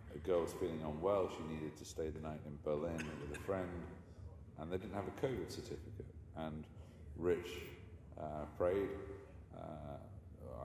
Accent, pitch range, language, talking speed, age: British, 75-95 Hz, English, 160 wpm, 40-59